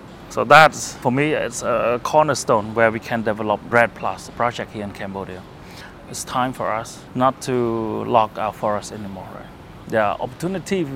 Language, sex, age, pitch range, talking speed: English, male, 30-49, 110-135 Hz, 170 wpm